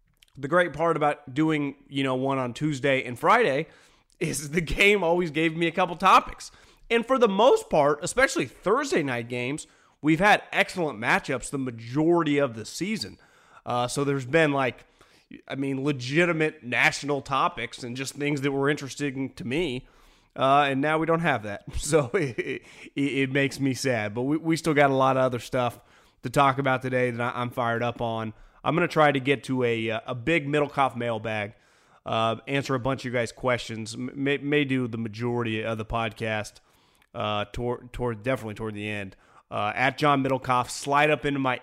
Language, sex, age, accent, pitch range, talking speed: English, male, 30-49, American, 120-145 Hz, 190 wpm